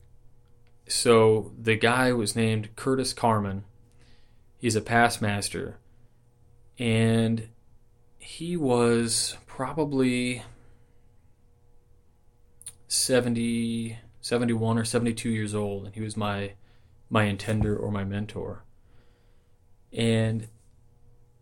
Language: English